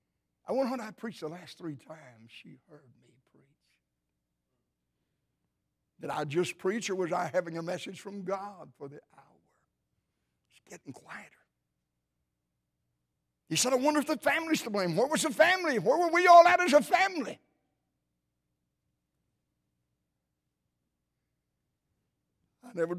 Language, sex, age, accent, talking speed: English, male, 60-79, American, 140 wpm